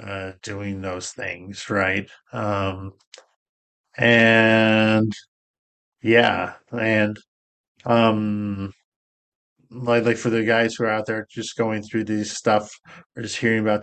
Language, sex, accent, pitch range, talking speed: English, male, American, 100-120 Hz, 120 wpm